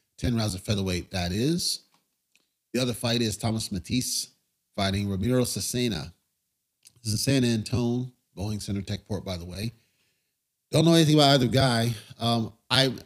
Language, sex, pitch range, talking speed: English, male, 100-130 Hz, 140 wpm